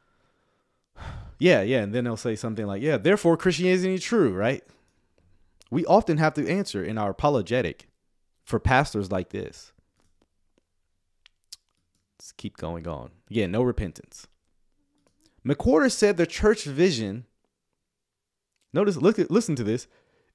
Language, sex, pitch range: English, male, 105-165 Hz